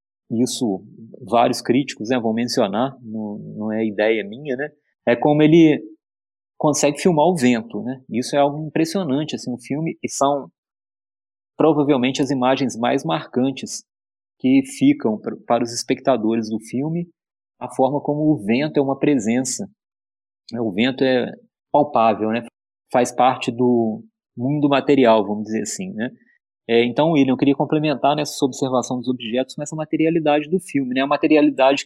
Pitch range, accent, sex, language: 125-155 Hz, Brazilian, male, Portuguese